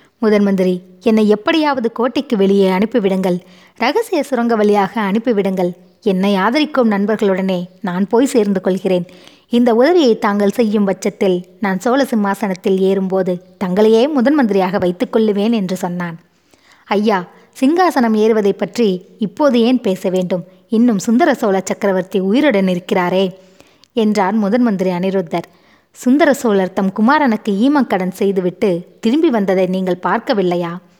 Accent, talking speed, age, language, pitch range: native, 115 wpm, 20-39, Tamil, 190-235 Hz